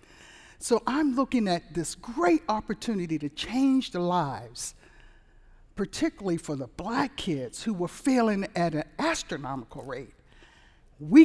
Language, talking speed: English, 130 wpm